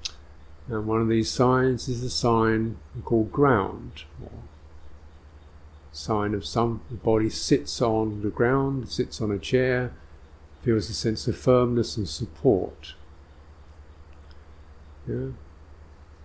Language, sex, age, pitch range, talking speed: English, male, 50-69, 75-115 Hz, 120 wpm